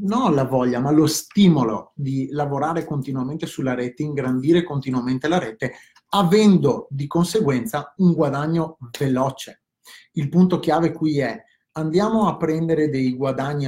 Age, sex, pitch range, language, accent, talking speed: 30-49, male, 130-165 Hz, Italian, native, 135 wpm